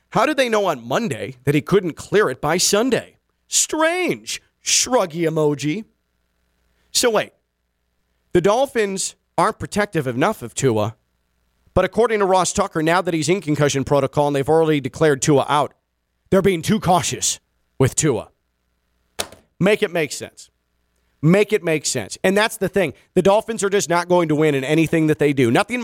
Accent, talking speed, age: American, 170 wpm, 40-59